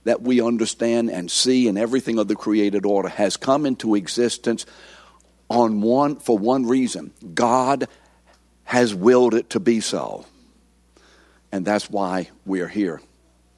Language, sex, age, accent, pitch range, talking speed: English, male, 60-79, American, 95-125 Hz, 140 wpm